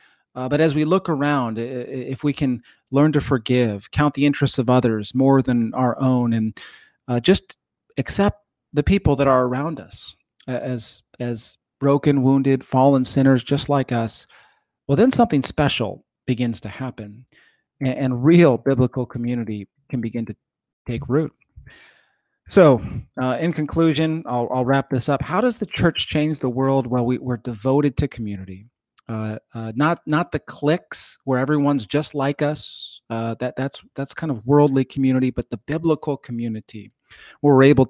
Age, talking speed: 40-59, 165 wpm